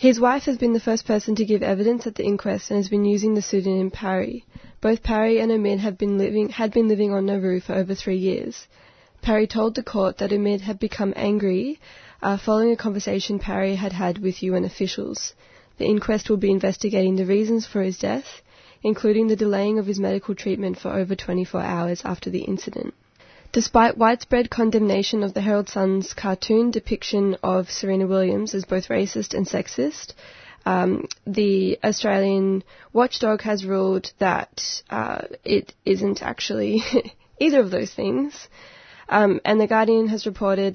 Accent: Australian